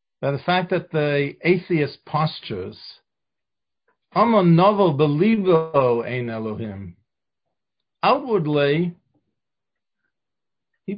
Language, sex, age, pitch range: English, male, 50-69, 130-175 Hz